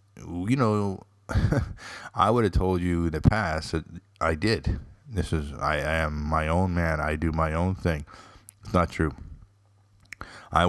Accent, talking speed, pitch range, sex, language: American, 165 wpm, 80-100 Hz, male, English